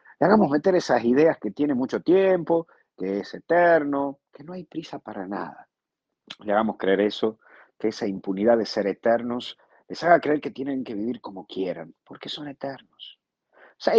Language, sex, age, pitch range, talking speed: Spanish, male, 50-69, 95-140 Hz, 175 wpm